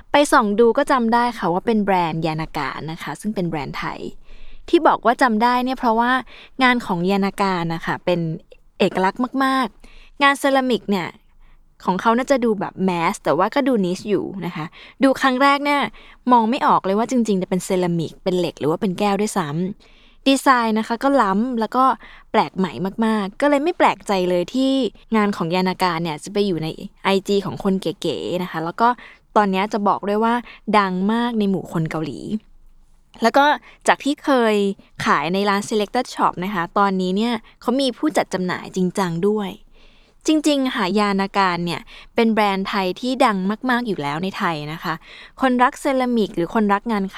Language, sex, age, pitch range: Thai, female, 20-39, 185-245 Hz